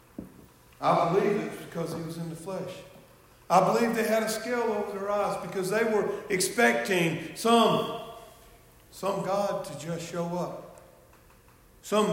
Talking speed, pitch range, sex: 150 wpm, 140-195 Hz, male